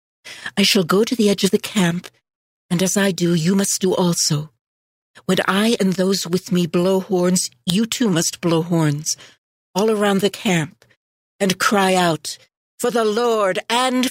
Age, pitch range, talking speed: 60-79, 180-220 Hz, 175 wpm